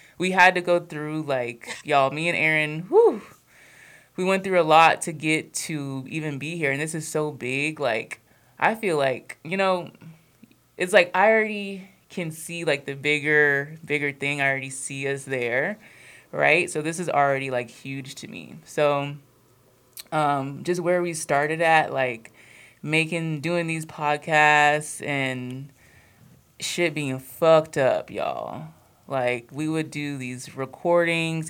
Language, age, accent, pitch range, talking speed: English, 20-39, American, 135-170 Hz, 155 wpm